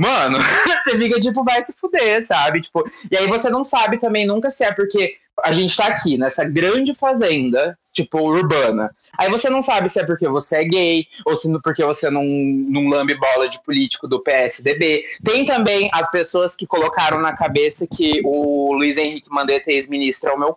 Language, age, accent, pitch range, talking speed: Portuguese, 20-39, Brazilian, 150-225 Hz, 200 wpm